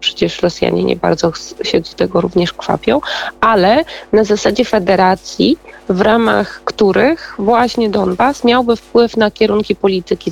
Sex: female